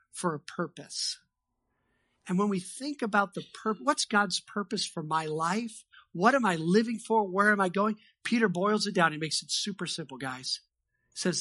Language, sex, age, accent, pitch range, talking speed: English, male, 50-69, American, 175-225 Hz, 190 wpm